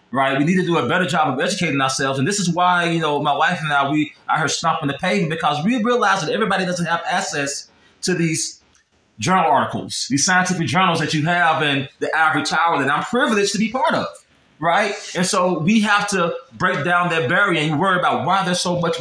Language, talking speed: English, 230 wpm